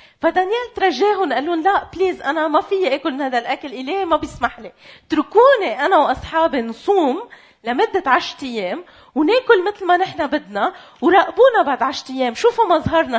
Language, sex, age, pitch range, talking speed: Arabic, female, 30-49, 230-365 Hz, 150 wpm